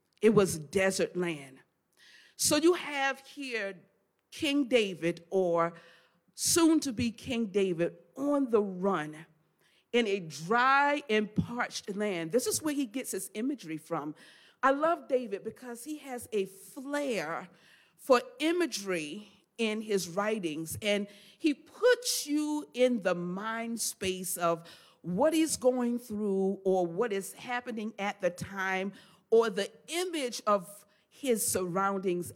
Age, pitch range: 40-59, 185-275 Hz